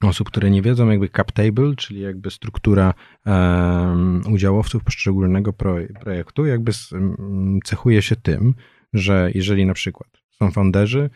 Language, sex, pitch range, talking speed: Polish, male, 90-110 Hz, 125 wpm